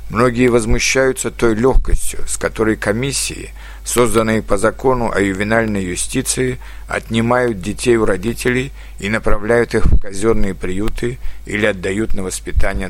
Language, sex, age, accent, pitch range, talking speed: Russian, male, 60-79, native, 95-125 Hz, 125 wpm